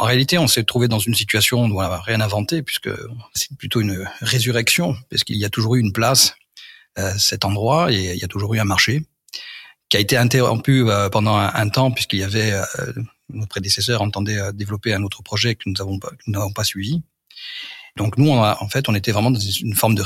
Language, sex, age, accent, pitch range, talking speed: French, male, 40-59, French, 105-125 Hz, 225 wpm